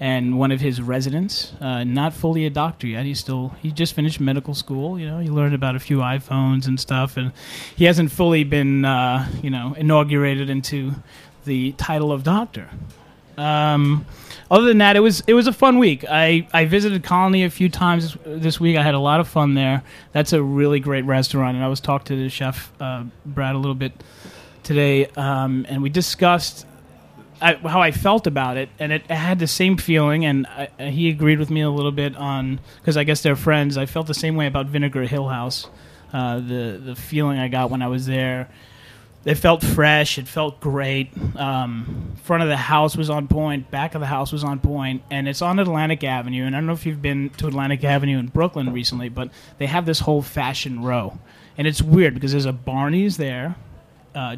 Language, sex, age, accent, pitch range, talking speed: English, male, 30-49, American, 130-155 Hz, 215 wpm